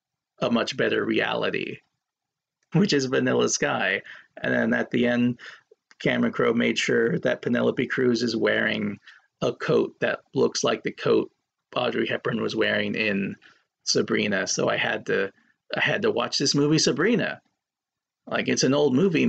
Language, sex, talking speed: English, male, 160 wpm